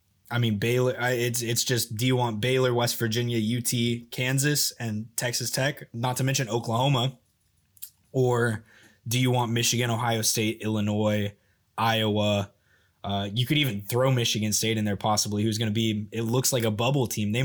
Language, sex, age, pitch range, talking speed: English, male, 20-39, 110-125 Hz, 175 wpm